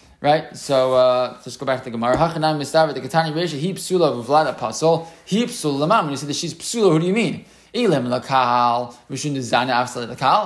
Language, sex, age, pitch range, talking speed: English, male, 20-39, 130-160 Hz, 165 wpm